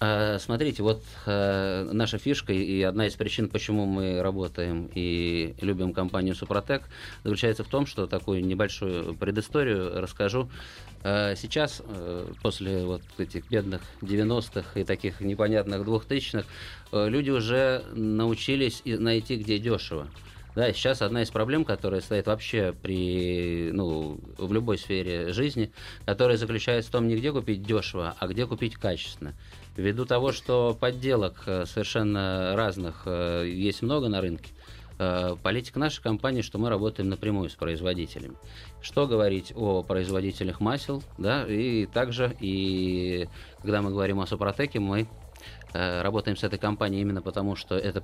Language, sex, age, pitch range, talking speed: Russian, male, 20-39, 95-110 Hz, 140 wpm